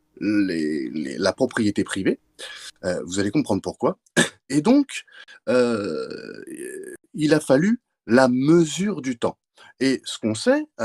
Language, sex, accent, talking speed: French, male, French, 135 wpm